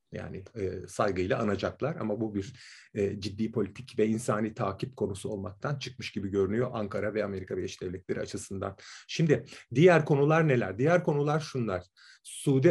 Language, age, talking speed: Turkish, 40-59, 140 wpm